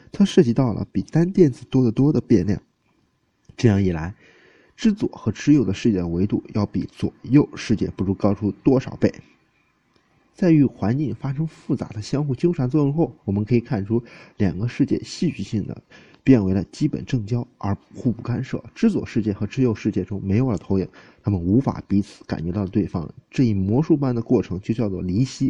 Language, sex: Chinese, male